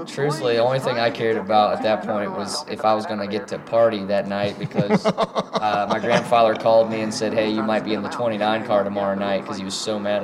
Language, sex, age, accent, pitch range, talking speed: English, male, 20-39, American, 100-110 Hz, 260 wpm